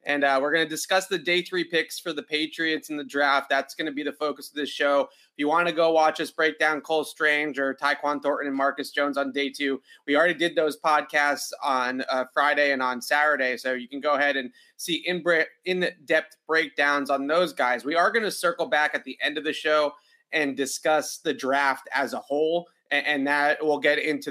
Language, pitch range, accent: English, 140-160 Hz, American